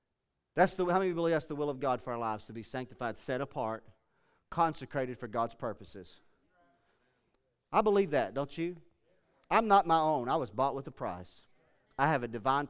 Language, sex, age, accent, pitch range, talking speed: English, male, 40-59, American, 130-180 Hz, 205 wpm